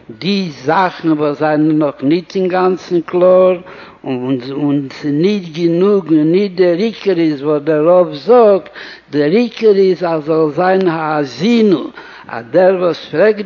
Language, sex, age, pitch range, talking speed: Hebrew, male, 60-79, 155-185 Hz, 145 wpm